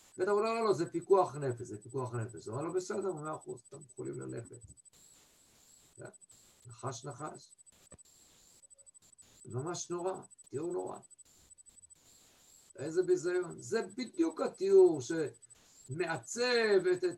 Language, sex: Hebrew, male